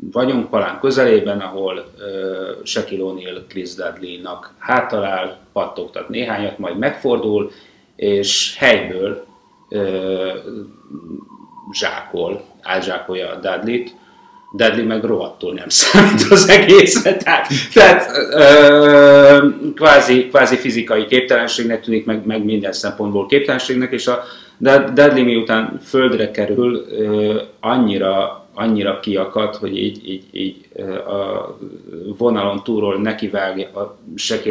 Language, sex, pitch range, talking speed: Hungarian, male, 100-120 Hz, 95 wpm